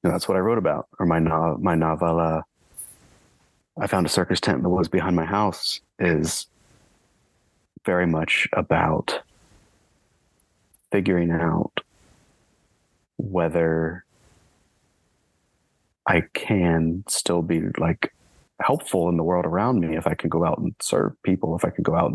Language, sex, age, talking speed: English, male, 30-49, 140 wpm